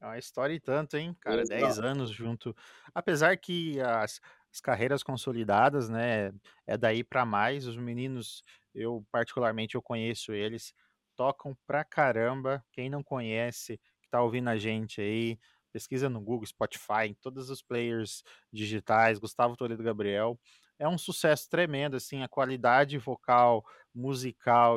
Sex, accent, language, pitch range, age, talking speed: male, Brazilian, Portuguese, 115-140 Hz, 20-39, 150 wpm